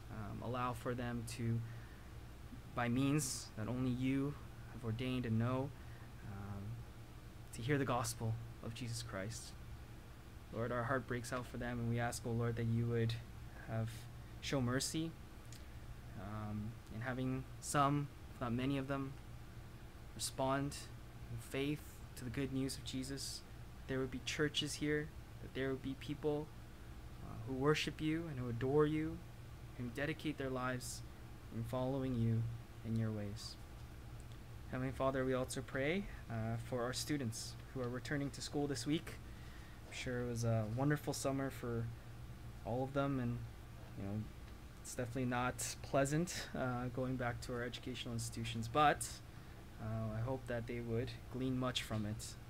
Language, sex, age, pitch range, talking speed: English, male, 20-39, 115-135 Hz, 160 wpm